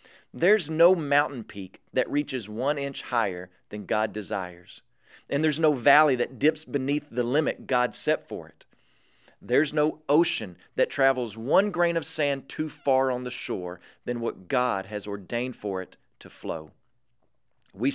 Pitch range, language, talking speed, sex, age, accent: 110-140 Hz, English, 165 wpm, male, 40-59, American